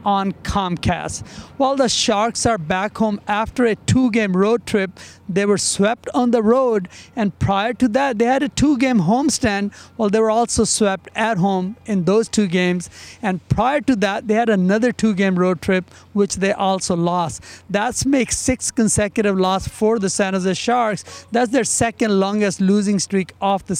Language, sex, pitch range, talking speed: English, male, 195-230 Hz, 180 wpm